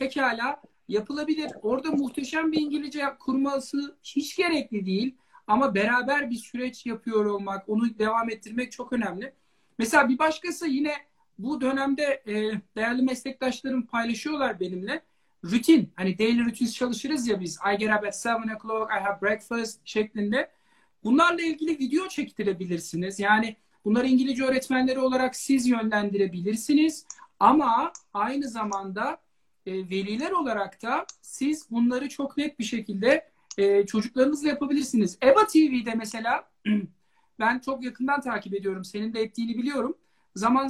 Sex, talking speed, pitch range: male, 125 wpm, 210-270 Hz